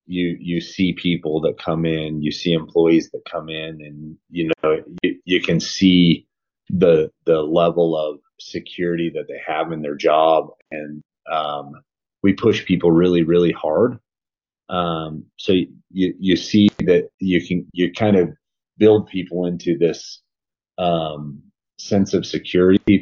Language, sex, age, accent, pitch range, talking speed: English, male, 30-49, American, 80-90 Hz, 155 wpm